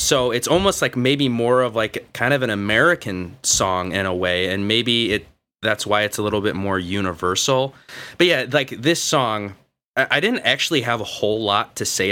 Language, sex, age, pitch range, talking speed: English, male, 20-39, 100-125 Hz, 205 wpm